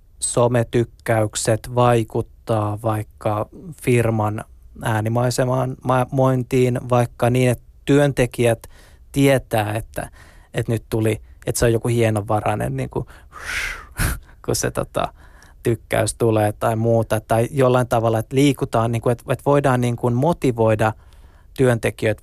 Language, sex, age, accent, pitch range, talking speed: Finnish, male, 20-39, native, 110-125 Hz, 115 wpm